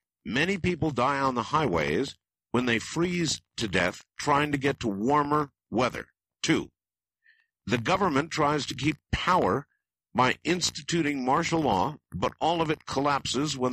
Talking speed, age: 150 wpm, 60-79